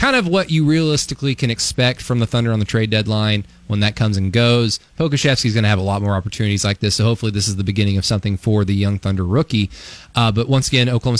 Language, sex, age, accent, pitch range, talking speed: English, male, 20-39, American, 110-135 Hz, 250 wpm